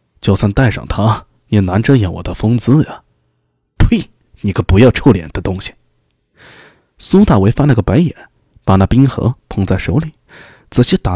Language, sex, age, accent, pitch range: Chinese, male, 20-39, native, 90-120 Hz